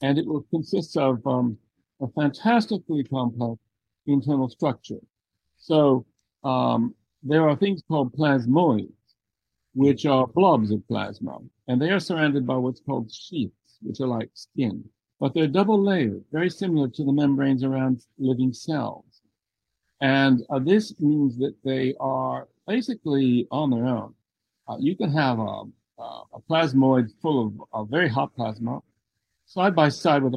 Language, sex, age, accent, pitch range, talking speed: English, male, 60-79, American, 120-150 Hz, 145 wpm